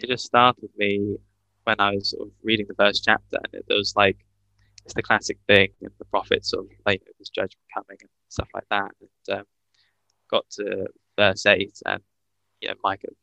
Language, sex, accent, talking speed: English, male, British, 205 wpm